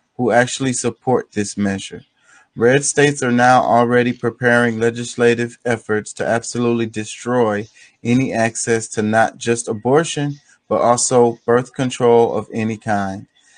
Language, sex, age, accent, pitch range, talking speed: English, male, 30-49, American, 115-125 Hz, 130 wpm